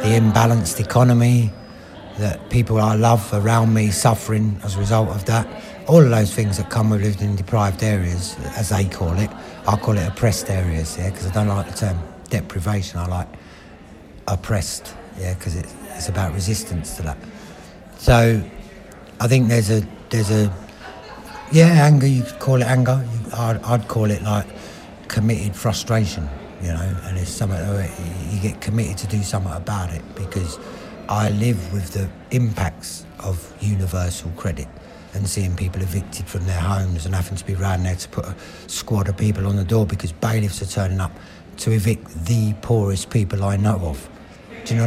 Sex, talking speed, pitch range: male, 180 wpm, 95-110 Hz